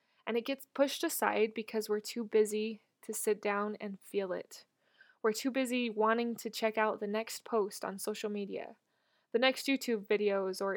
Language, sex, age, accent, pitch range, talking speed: English, female, 20-39, American, 210-245 Hz, 185 wpm